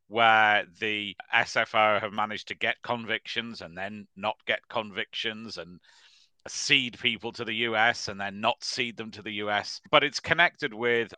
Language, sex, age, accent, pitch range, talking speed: English, male, 40-59, British, 105-125 Hz, 165 wpm